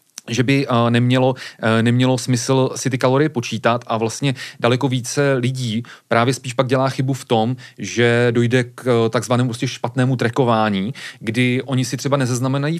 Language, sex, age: Czech, male, 30-49